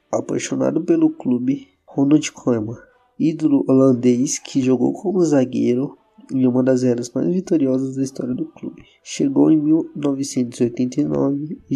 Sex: male